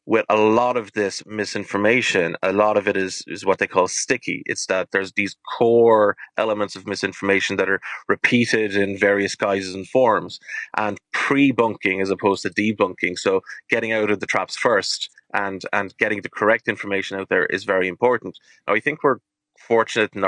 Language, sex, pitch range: English, male, 100-115 Hz